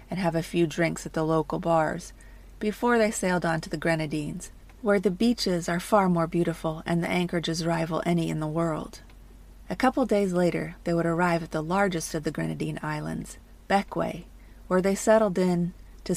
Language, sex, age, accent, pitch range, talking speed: English, female, 30-49, American, 160-185 Hz, 190 wpm